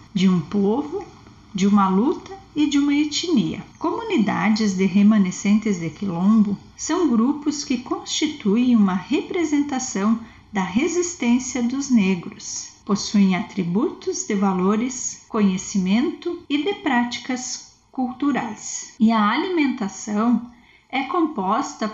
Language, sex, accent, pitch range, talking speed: Portuguese, female, Brazilian, 200-285 Hz, 105 wpm